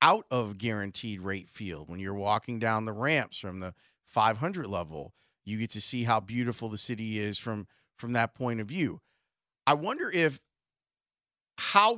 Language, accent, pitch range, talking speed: English, American, 120-165 Hz, 170 wpm